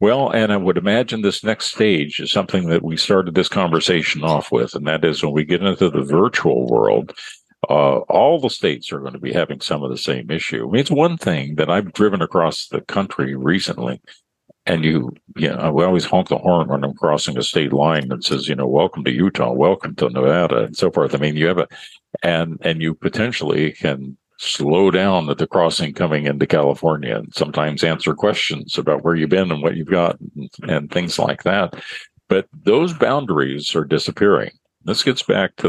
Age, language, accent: 50-69, English, American